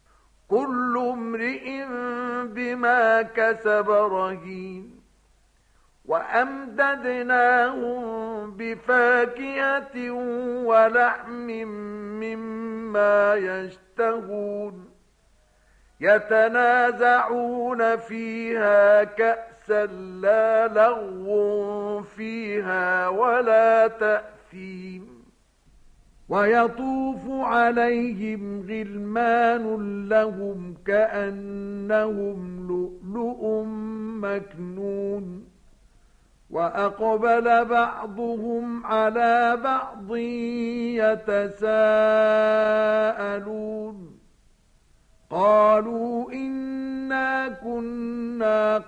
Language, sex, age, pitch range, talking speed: Arabic, male, 50-69, 205-235 Hz, 40 wpm